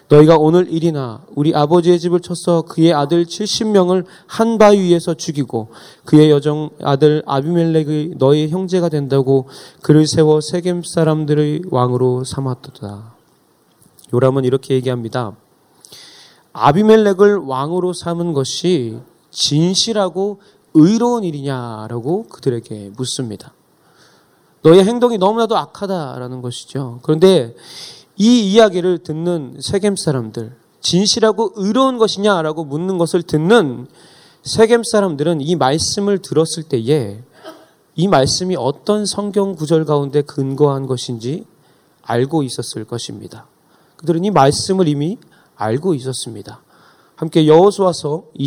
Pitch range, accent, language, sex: 135-180 Hz, native, Korean, male